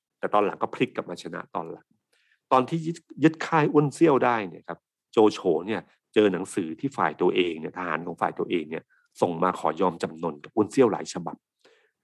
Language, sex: Thai, male